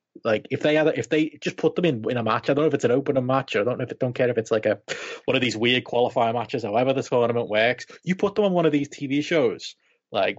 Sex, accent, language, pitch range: male, British, English, 125-190 Hz